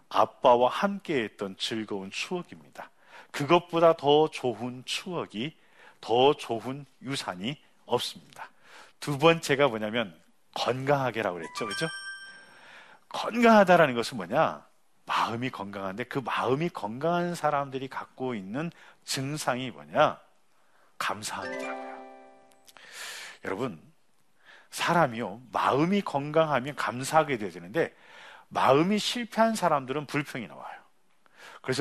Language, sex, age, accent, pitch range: Korean, male, 40-59, native, 125-175 Hz